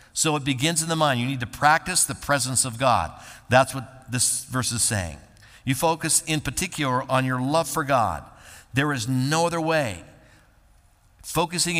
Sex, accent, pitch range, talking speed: male, American, 120-150 Hz, 180 wpm